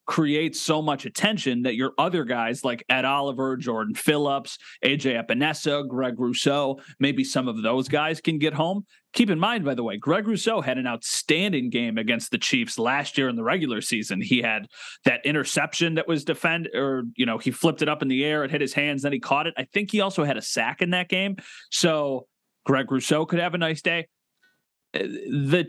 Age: 30-49